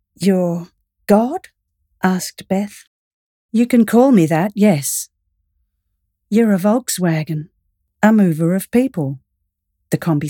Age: 40-59